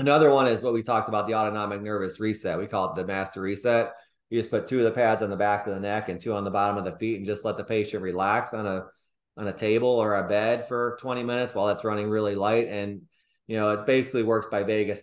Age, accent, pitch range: 30-49, American, 105-120 Hz